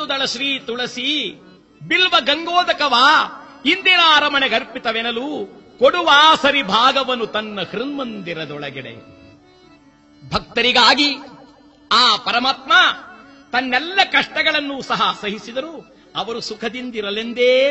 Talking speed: 70 wpm